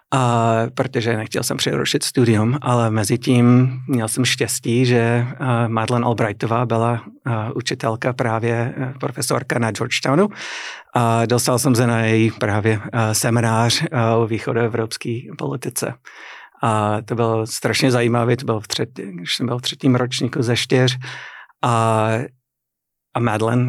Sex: male